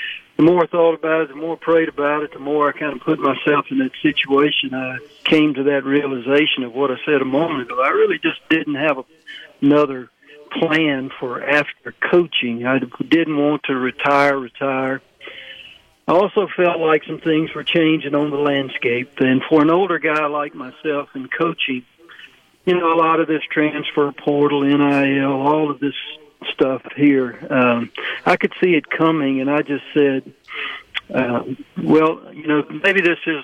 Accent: American